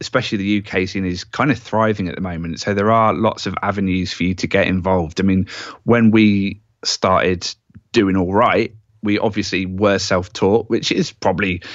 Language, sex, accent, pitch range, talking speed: English, male, British, 95-115 Hz, 190 wpm